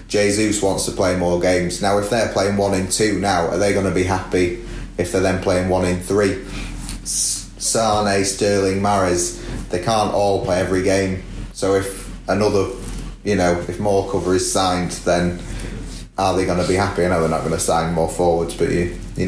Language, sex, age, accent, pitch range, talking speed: English, male, 30-49, British, 90-100 Hz, 200 wpm